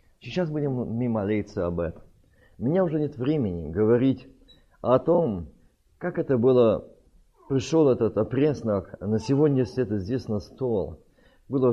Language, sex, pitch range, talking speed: Russian, male, 100-145 Hz, 135 wpm